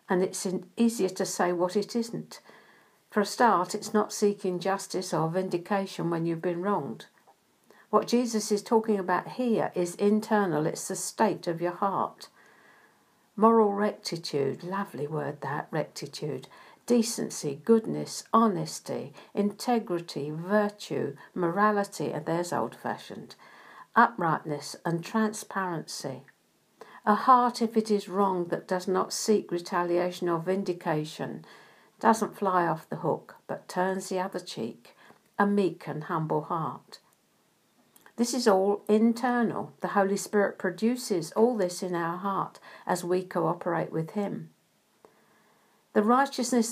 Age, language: 60-79, English